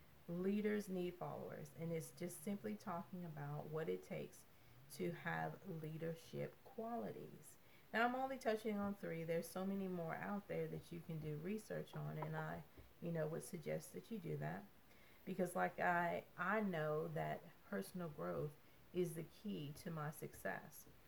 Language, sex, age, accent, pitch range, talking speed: English, female, 40-59, American, 160-200 Hz, 165 wpm